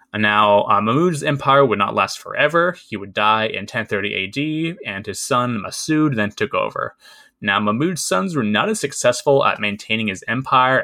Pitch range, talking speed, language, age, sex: 105-150 Hz, 175 wpm, English, 20-39, male